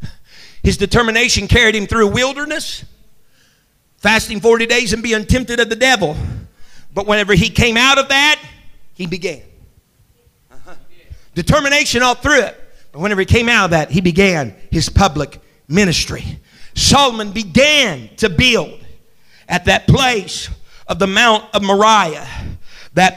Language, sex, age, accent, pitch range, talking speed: English, male, 50-69, American, 195-255 Hz, 140 wpm